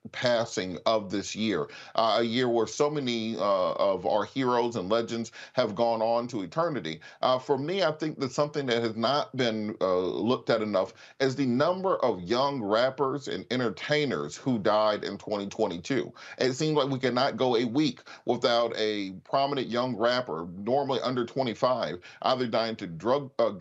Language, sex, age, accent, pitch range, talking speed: English, male, 40-59, American, 110-140 Hz, 175 wpm